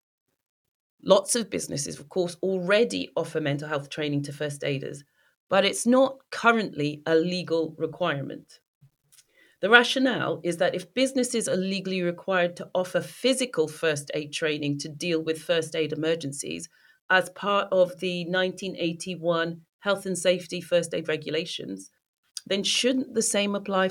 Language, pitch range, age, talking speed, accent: English, 160-205 Hz, 40-59, 150 wpm, British